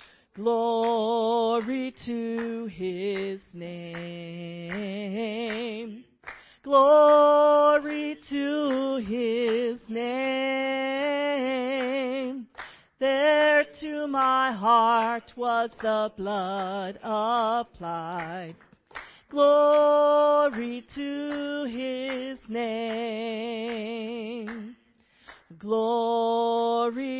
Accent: American